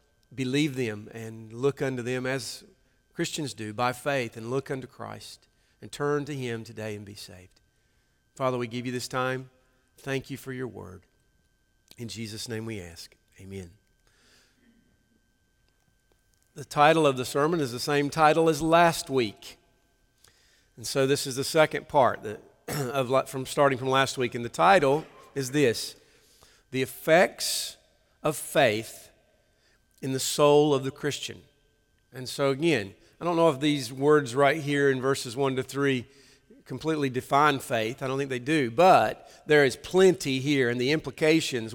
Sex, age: male, 50-69